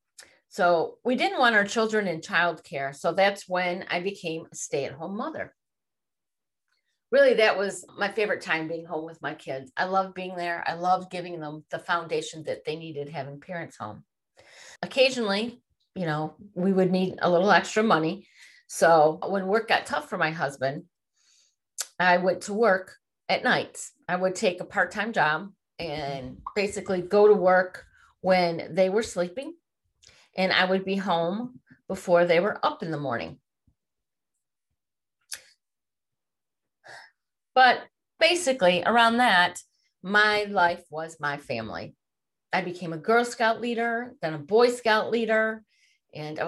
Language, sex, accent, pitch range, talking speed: English, female, American, 165-215 Hz, 150 wpm